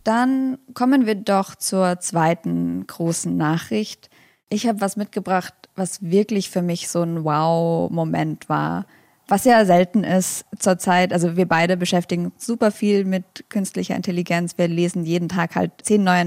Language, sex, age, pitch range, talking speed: German, female, 20-39, 170-205 Hz, 150 wpm